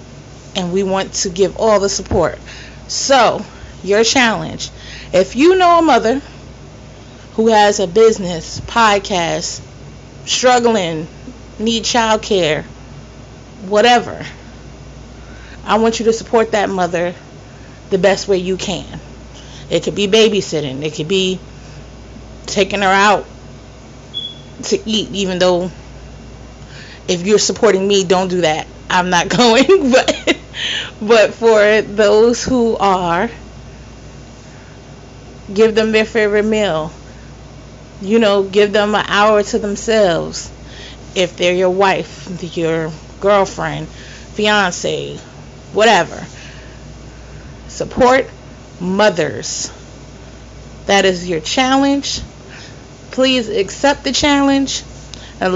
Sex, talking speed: female, 110 wpm